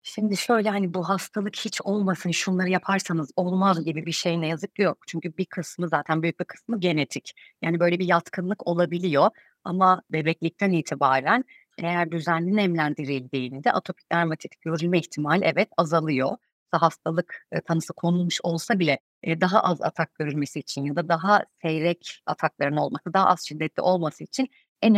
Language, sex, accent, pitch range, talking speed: Turkish, female, native, 155-190 Hz, 155 wpm